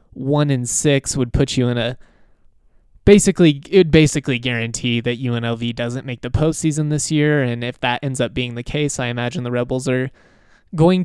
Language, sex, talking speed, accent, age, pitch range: English, male, 185 wpm, American, 20-39, 120-145 Hz